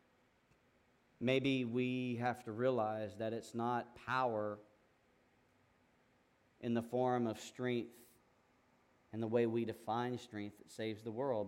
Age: 40-59